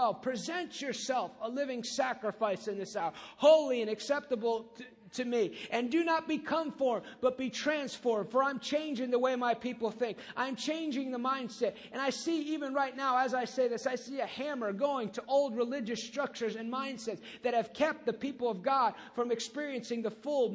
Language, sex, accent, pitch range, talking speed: English, male, American, 235-285 Hz, 195 wpm